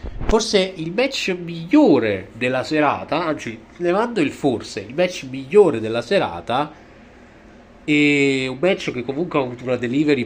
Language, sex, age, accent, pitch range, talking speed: Italian, male, 30-49, native, 110-165 Hz, 145 wpm